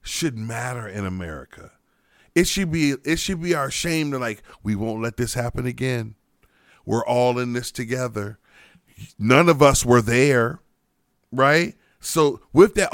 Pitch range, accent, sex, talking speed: 120-165 Hz, American, male, 160 wpm